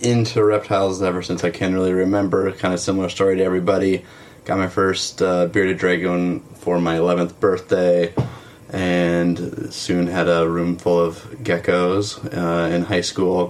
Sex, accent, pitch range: male, American, 85-100 Hz